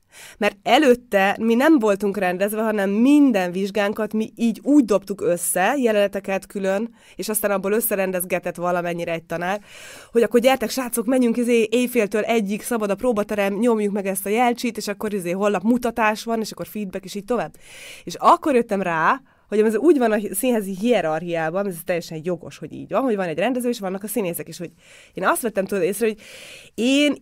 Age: 20-39